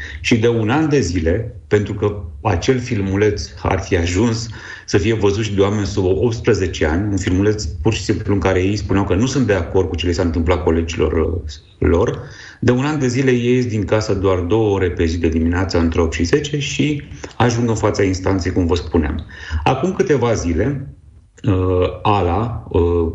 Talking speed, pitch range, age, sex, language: 190 wpm, 85-115 Hz, 40-59, male, Romanian